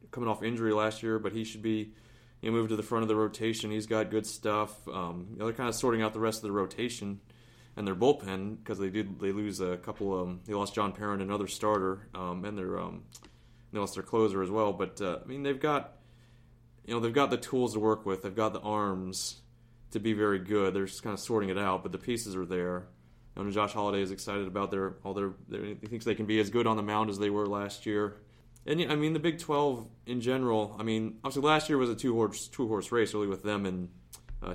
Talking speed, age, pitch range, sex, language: 250 wpm, 30-49, 100-115 Hz, male, English